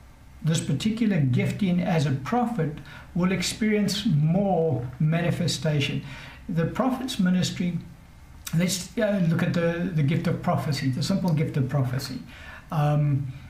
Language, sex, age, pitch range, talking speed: English, male, 60-79, 140-175 Hz, 120 wpm